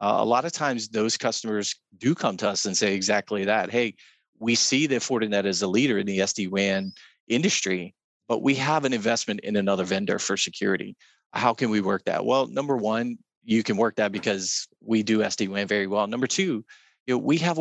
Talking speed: 200 wpm